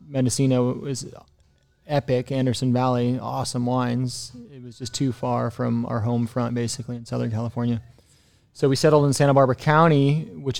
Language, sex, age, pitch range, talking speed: English, male, 20-39, 120-130 Hz, 160 wpm